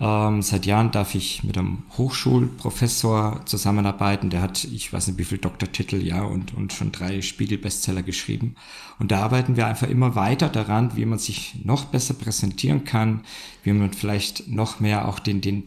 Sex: male